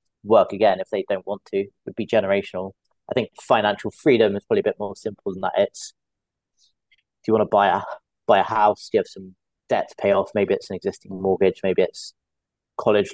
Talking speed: 220 wpm